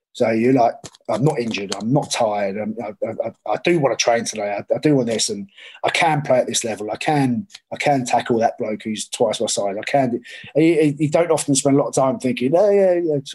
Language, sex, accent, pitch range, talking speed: English, male, British, 115-145 Hz, 255 wpm